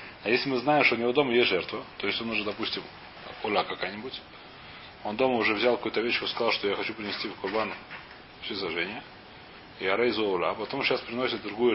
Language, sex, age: Russian, male, 30-49